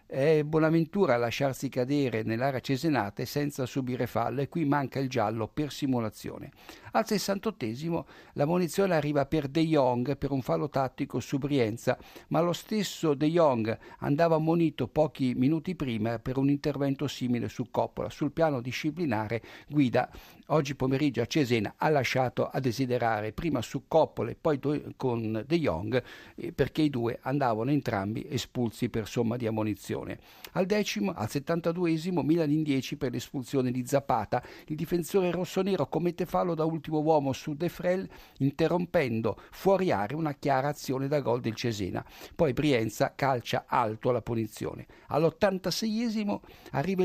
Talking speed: 150 wpm